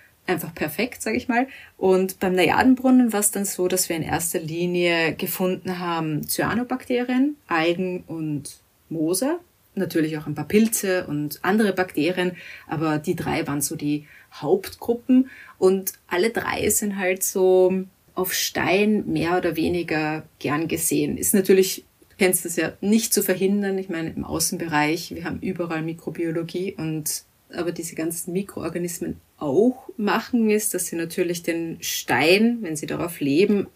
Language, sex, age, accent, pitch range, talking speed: German, female, 30-49, German, 160-195 Hz, 150 wpm